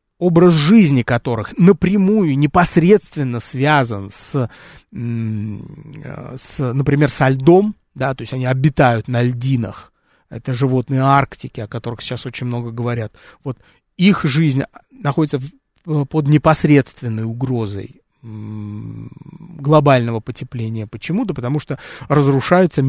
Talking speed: 105 wpm